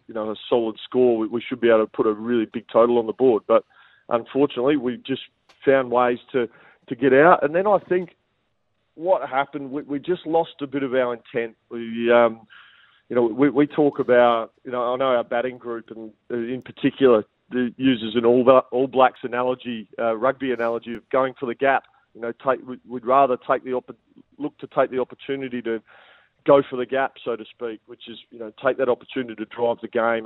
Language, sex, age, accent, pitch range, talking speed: English, male, 40-59, Australian, 115-130 Hz, 210 wpm